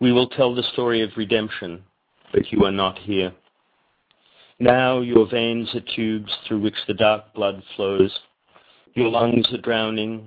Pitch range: 105-120 Hz